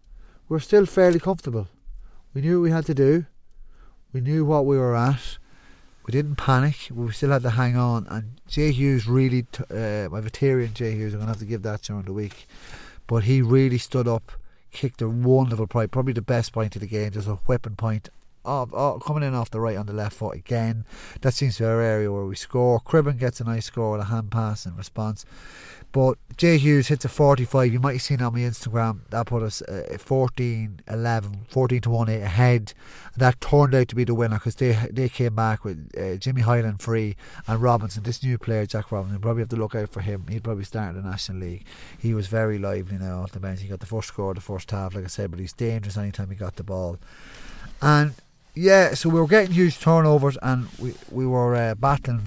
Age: 30-49